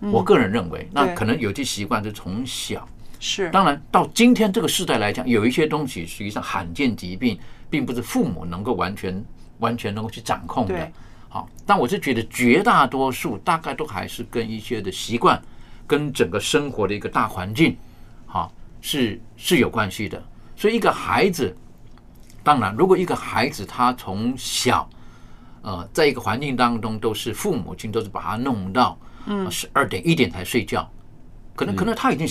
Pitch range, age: 100-125 Hz, 50-69